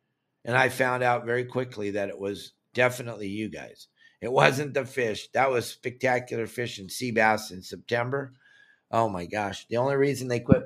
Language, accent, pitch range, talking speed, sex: English, American, 110-130 Hz, 180 wpm, male